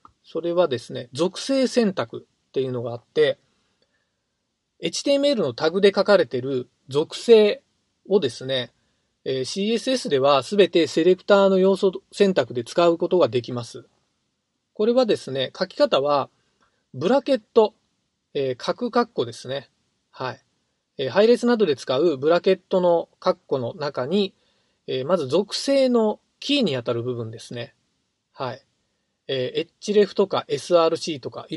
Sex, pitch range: male, 145-240 Hz